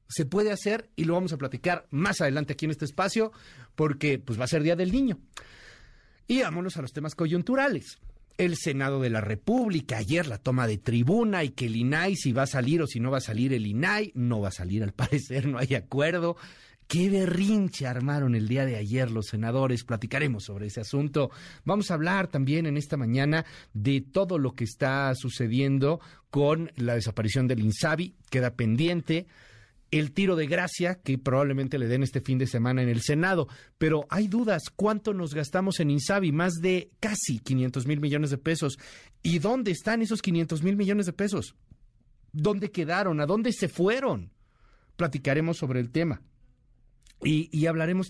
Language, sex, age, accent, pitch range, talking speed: Spanish, male, 40-59, Mexican, 125-170 Hz, 185 wpm